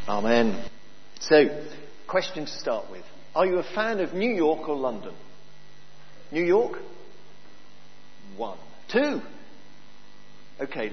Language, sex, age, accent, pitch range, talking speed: English, male, 50-69, British, 140-170 Hz, 110 wpm